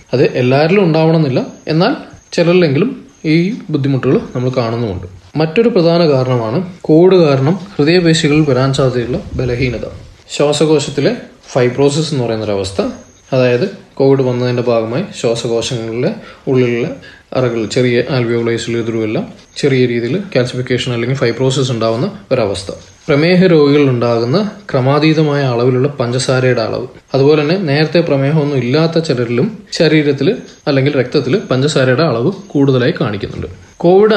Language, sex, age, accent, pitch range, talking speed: Malayalam, male, 20-39, native, 125-165 Hz, 100 wpm